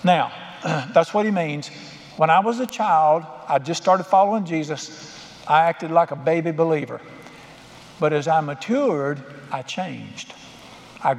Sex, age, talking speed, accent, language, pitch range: male, 60-79, 150 wpm, American, English, 150-185 Hz